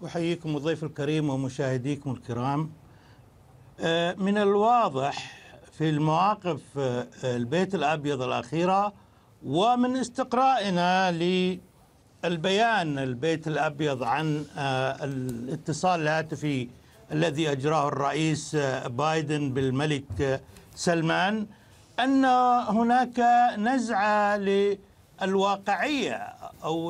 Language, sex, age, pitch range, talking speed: Arabic, male, 60-79, 150-205 Hz, 70 wpm